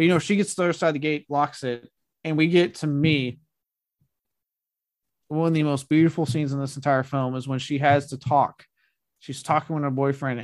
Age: 20-39